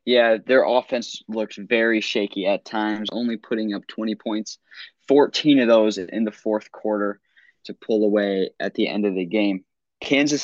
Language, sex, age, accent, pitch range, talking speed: English, male, 20-39, American, 105-120 Hz, 170 wpm